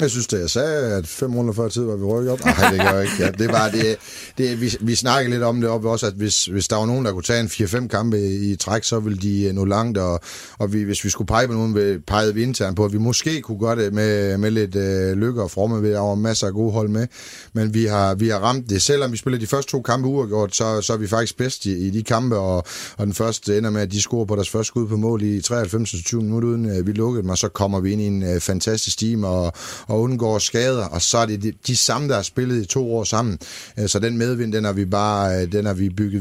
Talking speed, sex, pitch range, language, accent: 285 wpm, male, 95-115 Hz, Danish, native